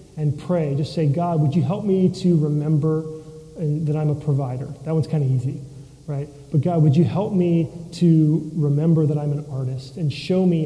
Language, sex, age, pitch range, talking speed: English, male, 30-49, 145-170 Hz, 205 wpm